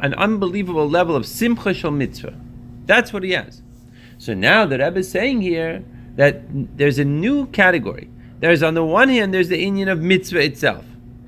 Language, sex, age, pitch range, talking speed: English, male, 30-49, 120-195 Hz, 180 wpm